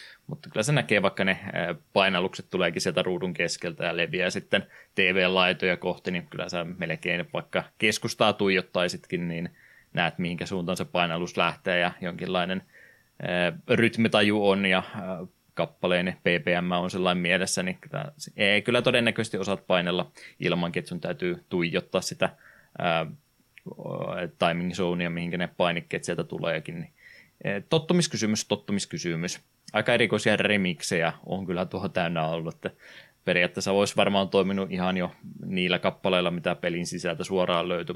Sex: male